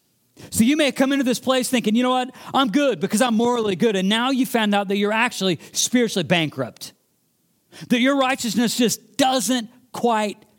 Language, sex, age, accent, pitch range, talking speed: English, male, 40-59, American, 155-250 Hz, 195 wpm